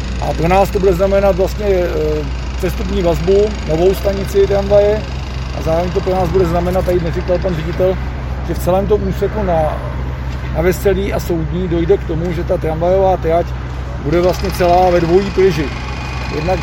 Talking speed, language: 165 wpm, Czech